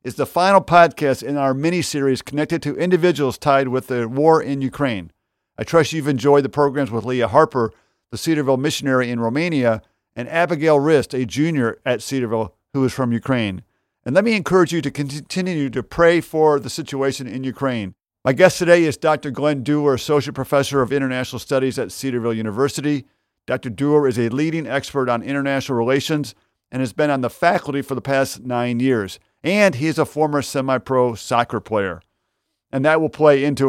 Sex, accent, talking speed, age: male, American, 185 wpm, 50-69